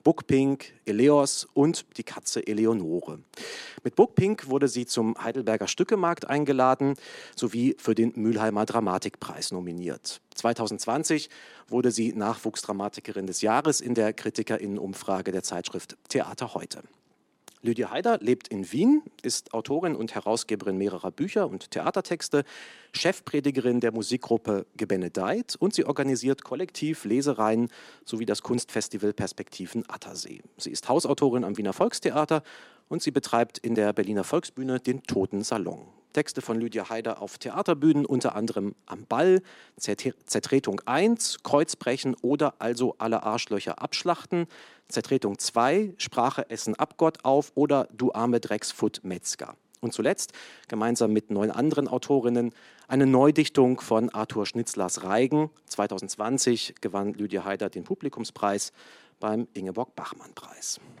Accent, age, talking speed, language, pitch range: German, 40-59, 125 wpm, German, 105-140 Hz